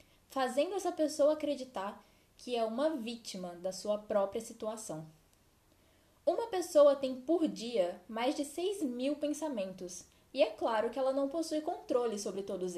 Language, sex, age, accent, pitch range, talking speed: Portuguese, female, 10-29, Brazilian, 205-305 Hz, 150 wpm